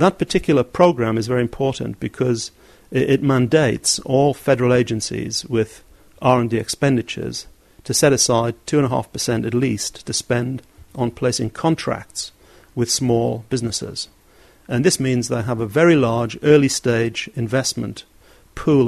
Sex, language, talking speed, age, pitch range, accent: male, English, 125 wpm, 50-69, 115-140 Hz, British